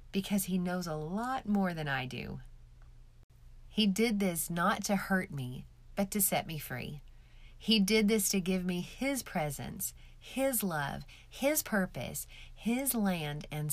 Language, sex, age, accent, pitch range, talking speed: English, female, 30-49, American, 155-205 Hz, 155 wpm